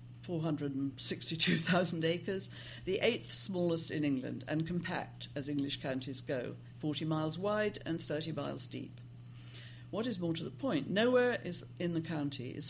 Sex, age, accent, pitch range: female, 60-79, British, 125-165 Hz